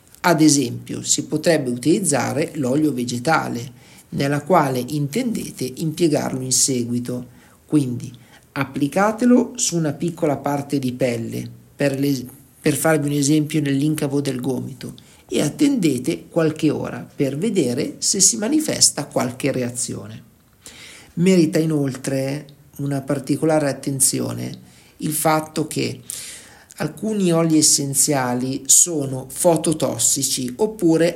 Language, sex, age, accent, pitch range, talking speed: Italian, male, 50-69, native, 130-165 Hz, 105 wpm